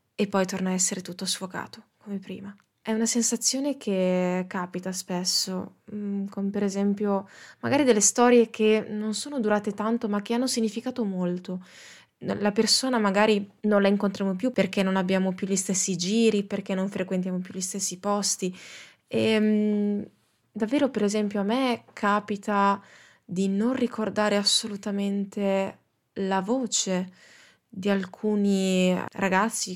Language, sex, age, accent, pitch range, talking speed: Italian, female, 20-39, native, 185-220 Hz, 140 wpm